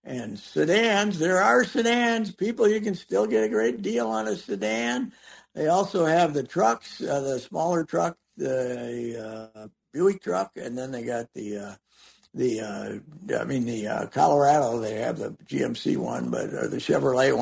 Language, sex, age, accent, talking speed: English, male, 60-79, American, 170 wpm